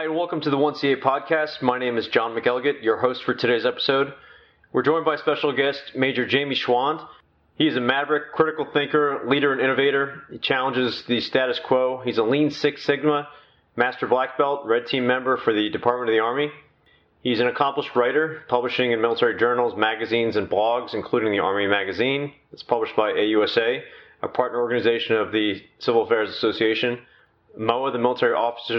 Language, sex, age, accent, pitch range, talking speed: English, male, 30-49, American, 120-145 Hz, 185 wpm